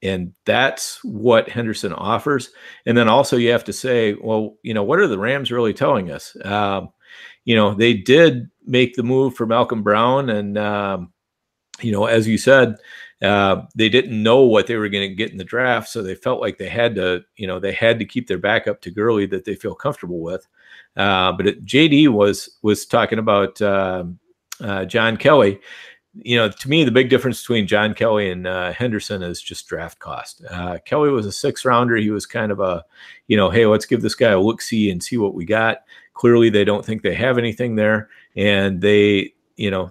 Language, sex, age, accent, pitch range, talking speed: English, male, 50-69, American, 95-120 Hz, 215 wpm